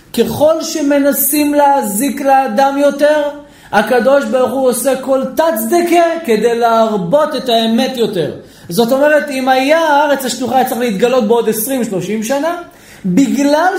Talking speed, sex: 125 wpm, male